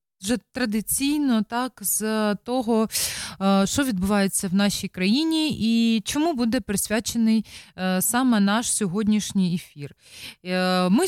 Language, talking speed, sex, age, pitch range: Dutch, 105 wpm, female, 20-39, 195-245 Hz